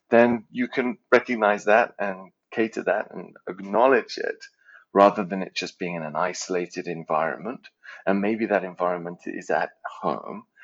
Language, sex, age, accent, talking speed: English, male, 30-49, British, 150 wpm